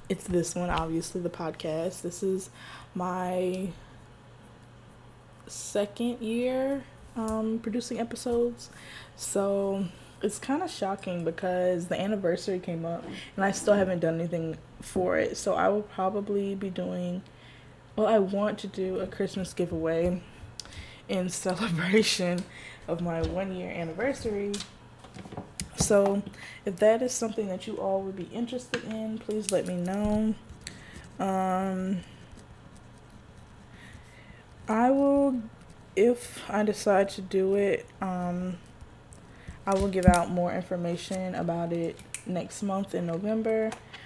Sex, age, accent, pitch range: female, 10-29, American, 175-210 Hz